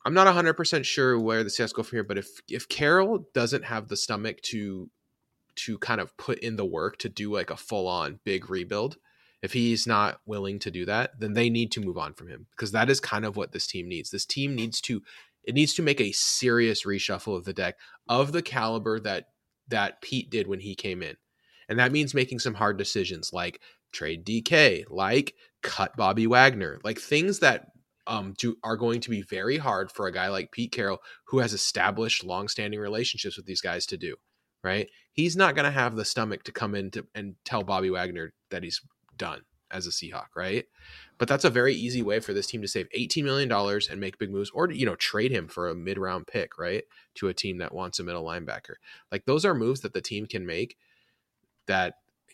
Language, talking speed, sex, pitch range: English, 220 wpm, male, 100-125 Hz